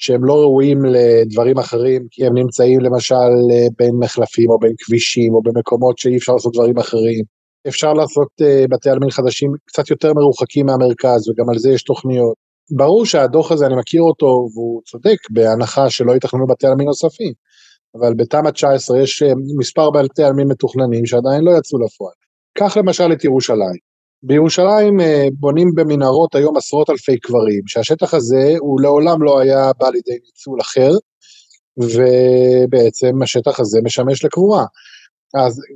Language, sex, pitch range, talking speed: Hebrew, male, 125-165 Hz, 150 wpm